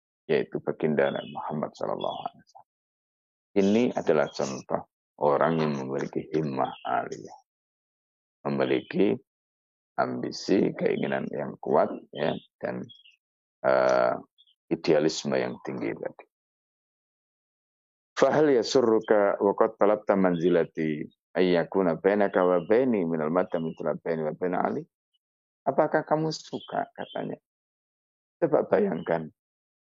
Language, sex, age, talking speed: Indonesian, male, 50-69, 65 wpm